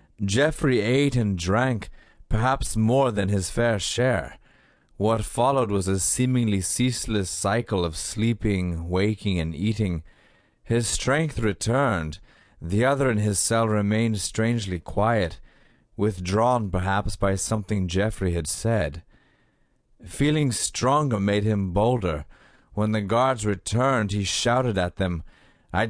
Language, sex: English, male